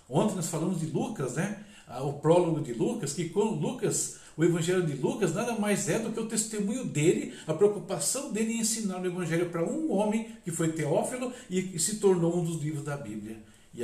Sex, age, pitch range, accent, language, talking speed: male, 60-79, 130-205 Hz, Brazilian, Portuguese, 205 wpm